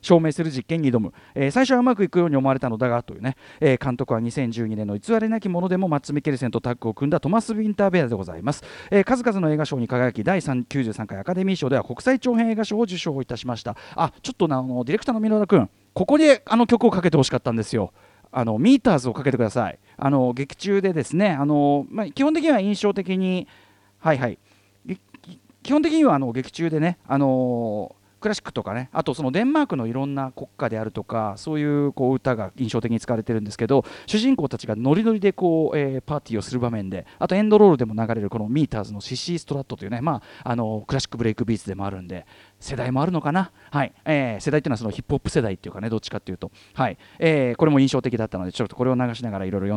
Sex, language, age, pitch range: male, Japanese, 40-59, 120-185 Hz